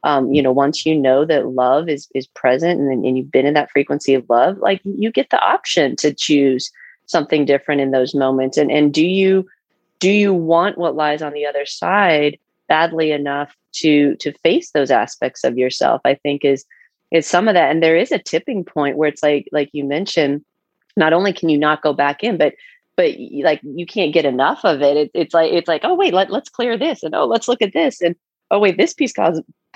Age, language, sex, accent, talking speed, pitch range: 30-49, English, female, American, 230 wpm, 145-180 Hz